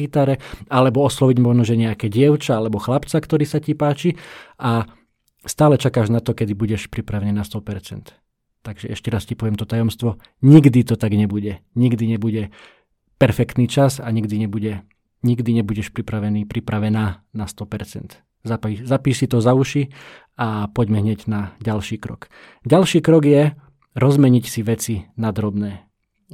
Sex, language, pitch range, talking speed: male, Slovak, 110-130 Hz, 150 wpm